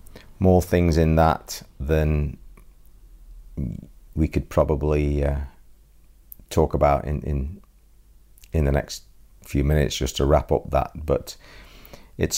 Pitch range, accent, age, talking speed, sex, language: 75-85 Hz, British, 40-59, 120 wpm, male, English